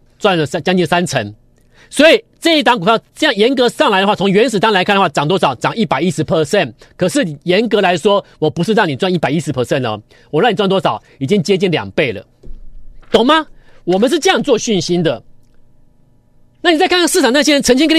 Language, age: Chinese, 40-59